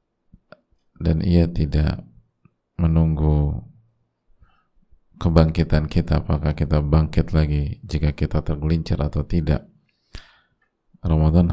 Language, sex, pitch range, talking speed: Indonesian, male, 75-85 Hz, 85 wpm